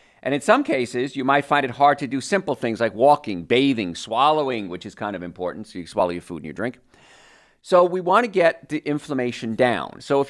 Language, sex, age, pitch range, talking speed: English, male, 50-69, 105-140 Hz, 235 wpm